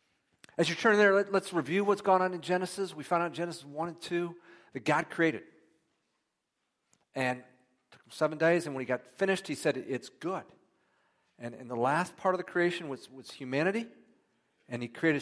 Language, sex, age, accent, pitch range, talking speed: English, male, 50-69, American, 125-165 Hz, 200 wpm